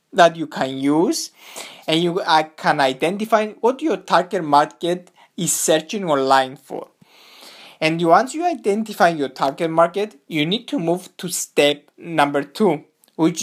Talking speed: 145 wpm